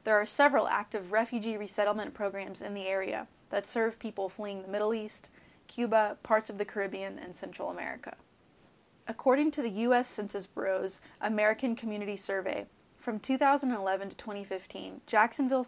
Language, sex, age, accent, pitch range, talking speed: English, female, 20-39, American, 200-235 Hz, 150 wpm